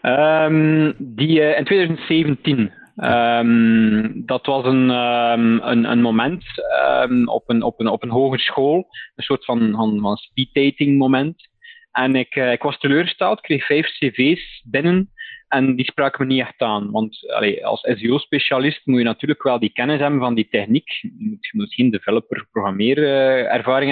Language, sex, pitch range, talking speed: Dutch, male, 120-150 Hz, 165 wpm